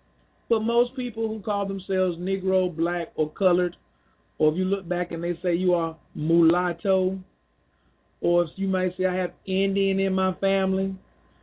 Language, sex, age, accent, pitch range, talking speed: English, male, 40-59, American, 165-205 Hz, 170 wpm